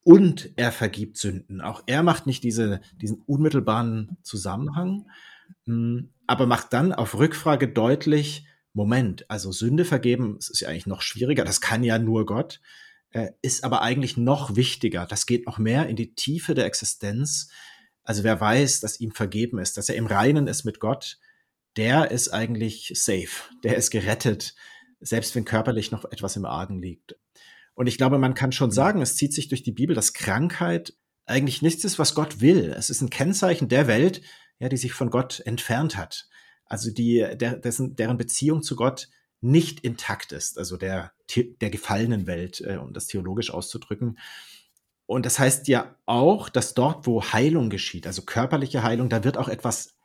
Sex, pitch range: male, 110-140 Hz